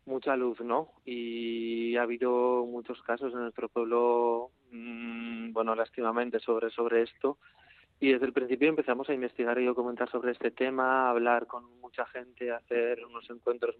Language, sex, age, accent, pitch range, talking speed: Spanish, male, 20-39, Spanish, 115-125 Hz, 165 wpm